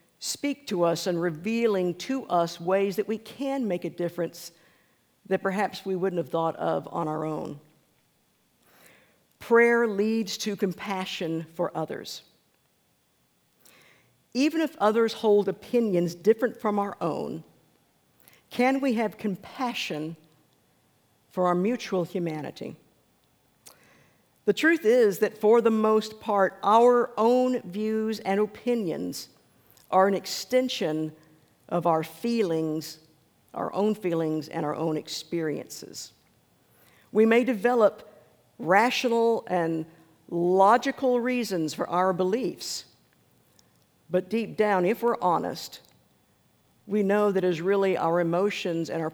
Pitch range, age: 165-220 Hz, 50-69